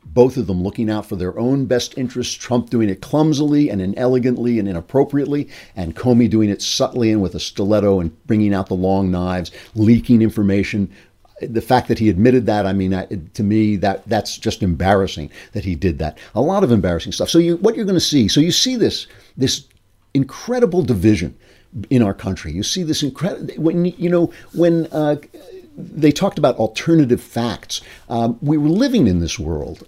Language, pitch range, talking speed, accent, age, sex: English, 100-130 Hz, 195 wpm, American, 50-69, male